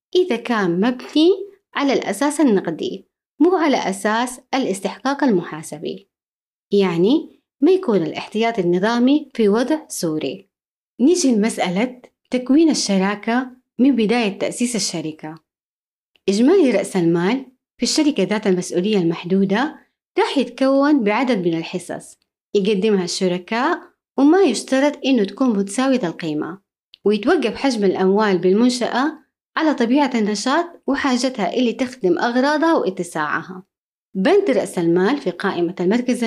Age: 20-39